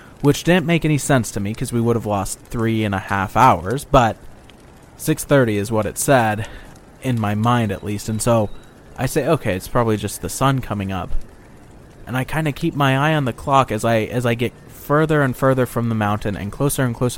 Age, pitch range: 20-39, 105-130 Hz